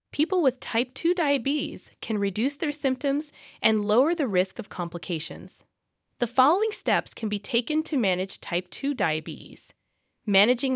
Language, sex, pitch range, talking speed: English, female, 180-260 Hz, 150 wpm